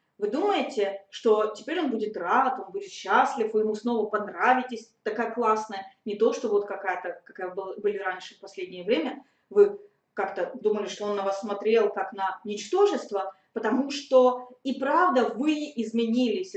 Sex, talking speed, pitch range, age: female, 165 wpm, 200-260 Hz, 20-39